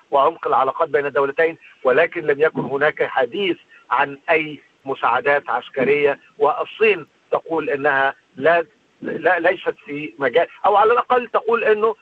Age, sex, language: 50-69, male, Arabic